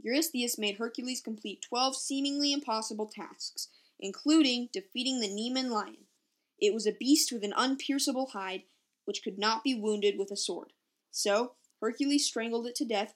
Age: 10-29